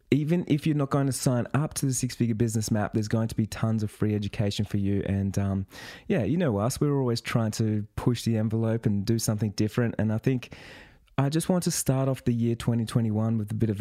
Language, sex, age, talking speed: English, male, 20-39, 250 wpm